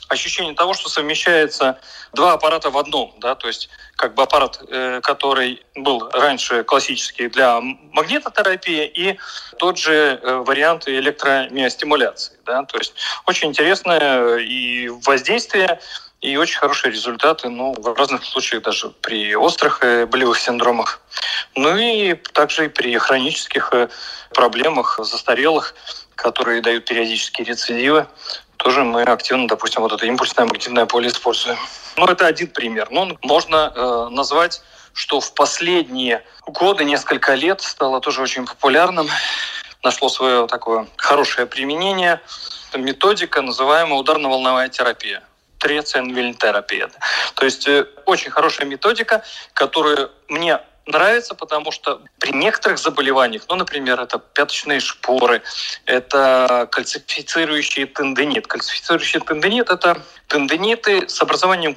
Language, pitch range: Russian, 125-165 Hz